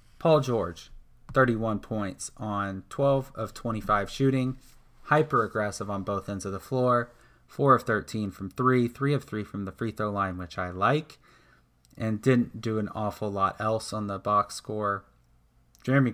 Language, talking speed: English, 165 wpm